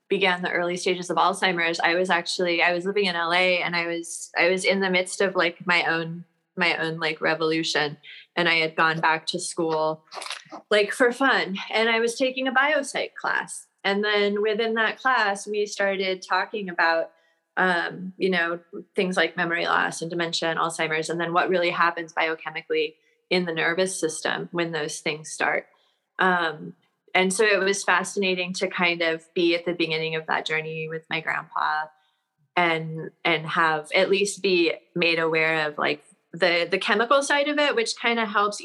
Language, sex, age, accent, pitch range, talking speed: English, female, 20-39, American, 165-200 Hz, 185 wpm